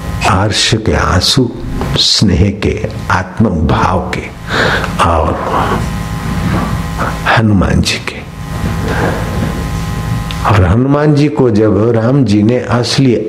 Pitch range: 100-130 Hz